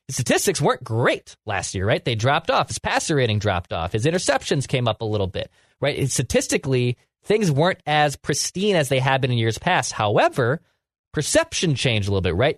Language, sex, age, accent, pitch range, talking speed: English, male, 20-39, American, 110-150 Hz, 200 wpm